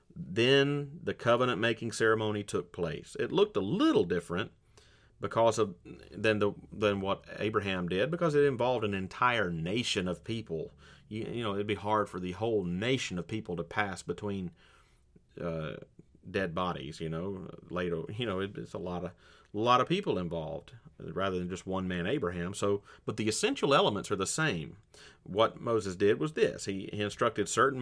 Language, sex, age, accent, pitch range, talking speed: English, male, 40-59, American, 95-125 Hz, 180 wpm